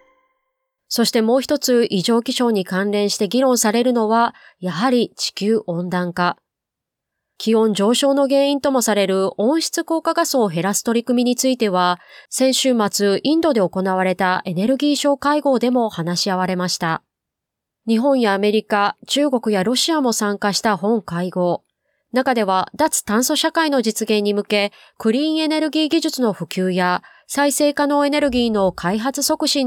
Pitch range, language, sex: 190-265 Hz, Japanese, female